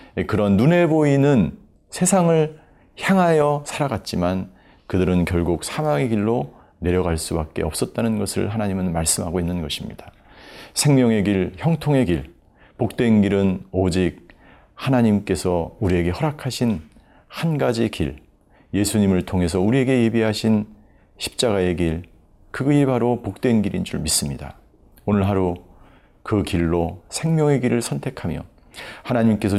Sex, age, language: male, 40-59, Korean